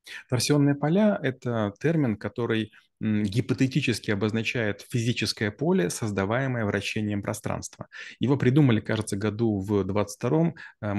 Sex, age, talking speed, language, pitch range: male, 30-49, 110 wpm, Russian, 110-135 Hz